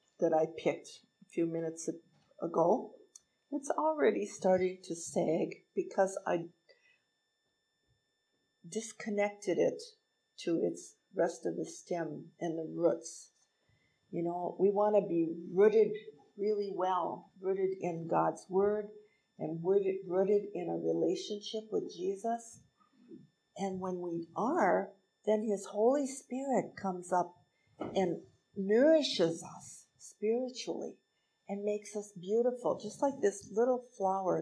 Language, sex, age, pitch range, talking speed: English, female, 60-79, 180-235 Hz, 120 wpm